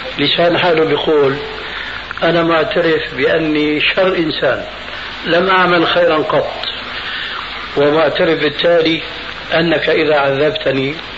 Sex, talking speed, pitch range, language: male, 90 wpm, 135-170 Hz, Arabic